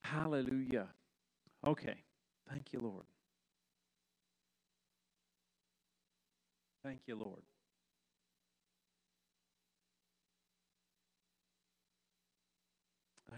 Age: 50-69